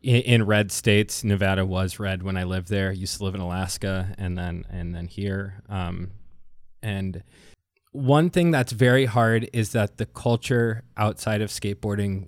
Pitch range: 95-110 Hz